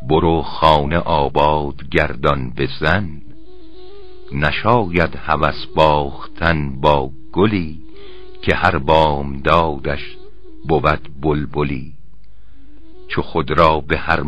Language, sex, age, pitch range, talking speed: Persian, male, 60-79, 80-105 Hz, 95 wpm